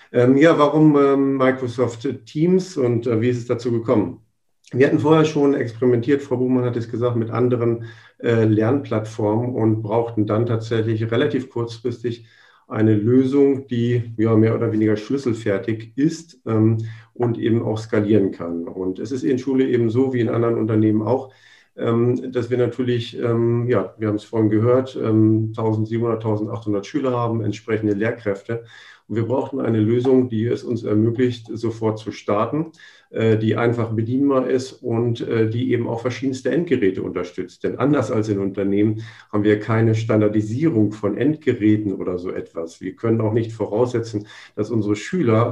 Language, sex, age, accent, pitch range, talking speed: German, male, 50-69, German, 110-125 Hz, 160 wpm